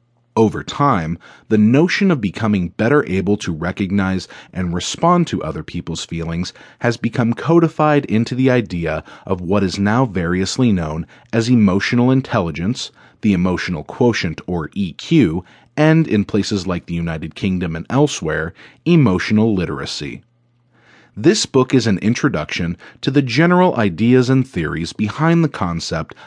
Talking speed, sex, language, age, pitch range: 140 wpm, male, English, 30-49, 90-140 Hz